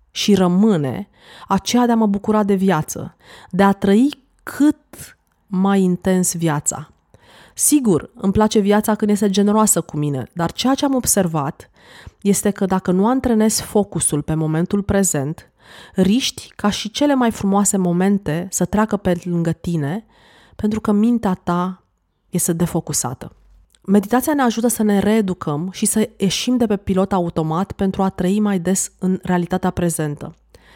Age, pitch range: 30-49, 180-220 Hz